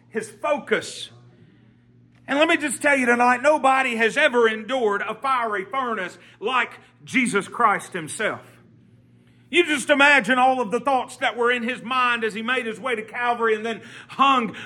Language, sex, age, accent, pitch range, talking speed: English, male, 40-59, American, 210-280 Hz, 170 wpm